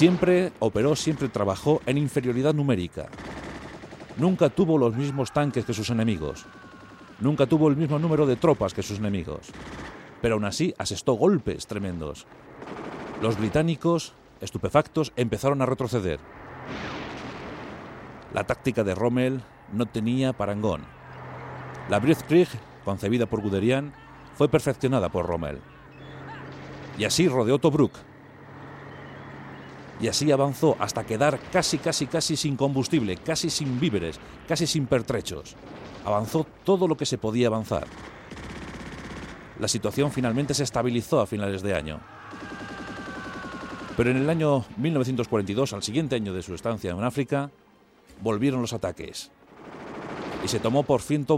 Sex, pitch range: male, 105-145 Hz